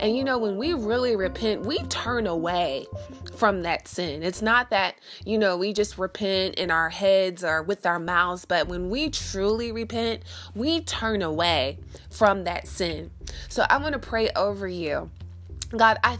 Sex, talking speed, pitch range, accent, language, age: female, 180 wpm, 175-220 Hz, American, English, 20-39